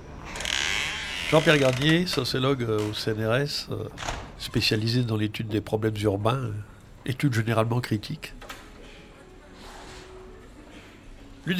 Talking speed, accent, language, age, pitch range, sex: 80 wpm, French, French, 60-79, 115-150 Hz, male